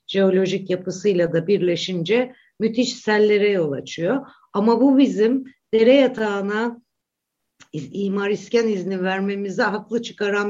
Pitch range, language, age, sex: 180-235 Hz, Turkish, 60-79, female